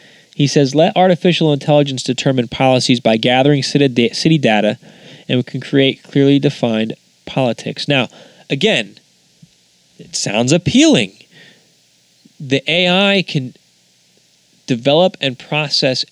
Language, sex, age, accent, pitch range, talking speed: English, male, 20-39, American, 120-150 Hz, 110 wpm